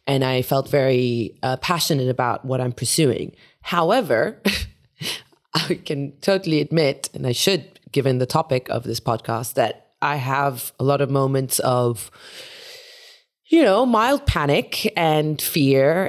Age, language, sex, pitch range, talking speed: 20-39, English, female, 135-190 Hz, 140 wpm